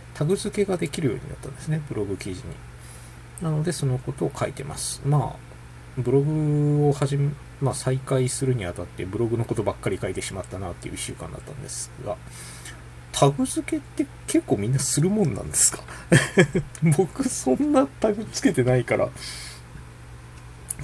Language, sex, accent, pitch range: Japanese, male, native, 90-145 Hz